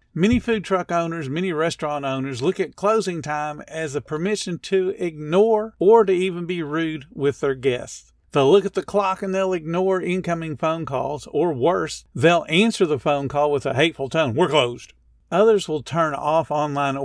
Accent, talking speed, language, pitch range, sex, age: American, 185 wpm, English, 135-185 Hz, male, 50-69